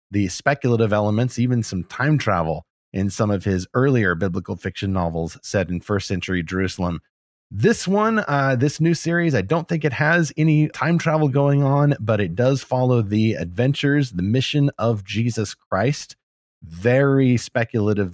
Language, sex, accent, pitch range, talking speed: English, male, American, 95-130 Hz, 160 wpm